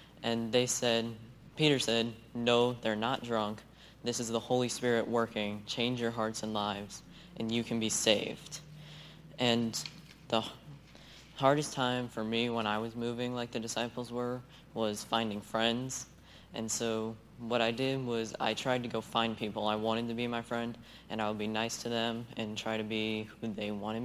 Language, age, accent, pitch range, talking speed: English, 20-39, American, 110-125 Hz, 185 wpm